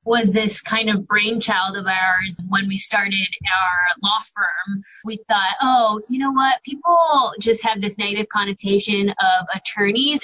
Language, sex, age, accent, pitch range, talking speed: English, female, 20-39, American, 195-235 Hz, 160 wpm